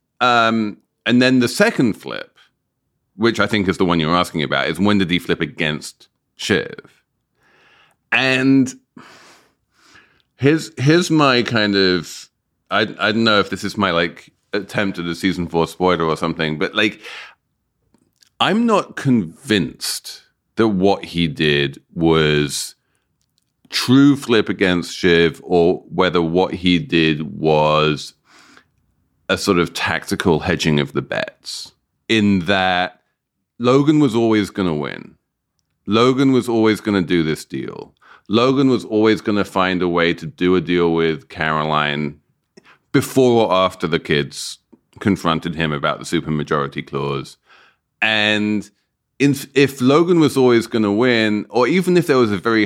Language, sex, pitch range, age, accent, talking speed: English, male, 85-115 Hz, 30-49, British, 150 wpm